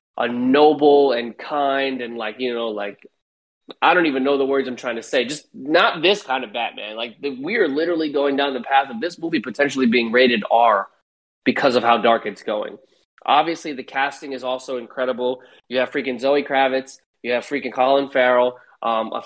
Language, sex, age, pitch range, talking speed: English, male, 20-39, 120-140 Hz, 195 wpm